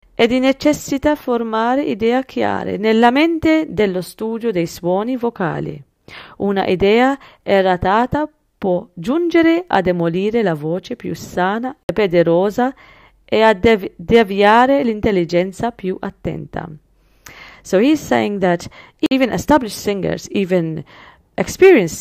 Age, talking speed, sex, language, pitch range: 40-59, 110 wpm, female, English, 175-250 Hz